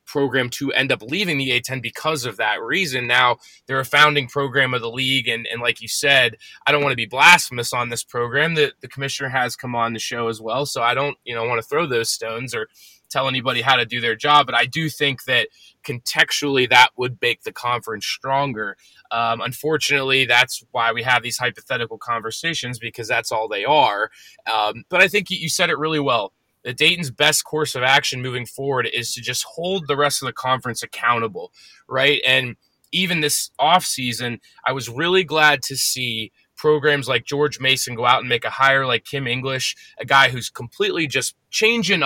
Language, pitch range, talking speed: English, 120-150 Hz, 205 wpm